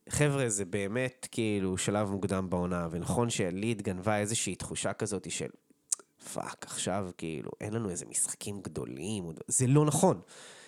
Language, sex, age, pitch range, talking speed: Hebrew, male, 20-39, 100-135 Hz, 140 wpm